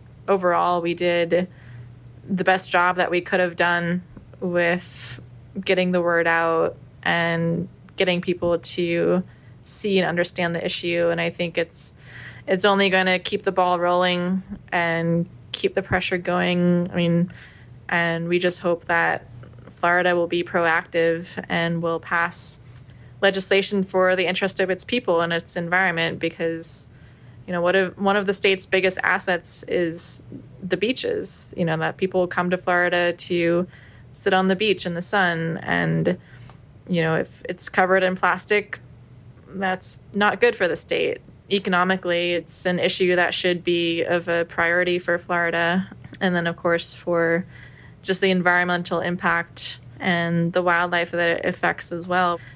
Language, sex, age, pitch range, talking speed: English, female, 20-39, 165-180 Hz, 155 wpm